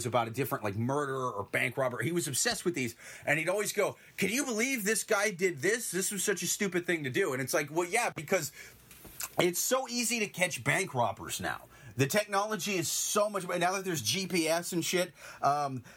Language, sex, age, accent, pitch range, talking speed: English, male, 30-49, American, 130-185 Hz, 220 wpm